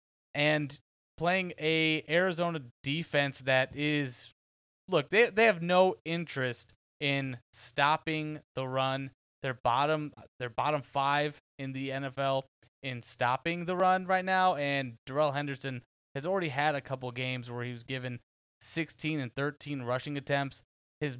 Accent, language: American, English